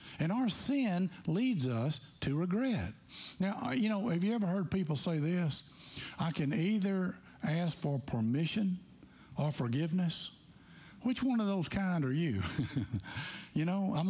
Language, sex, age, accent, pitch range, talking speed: English, male, 60-79, American, 135-190 Hz, 150 wpm